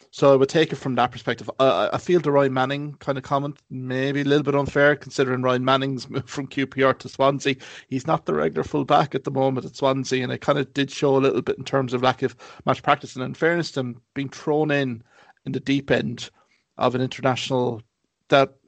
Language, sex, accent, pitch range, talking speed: English, male, Irish, 125-140 Hz, 230 wpm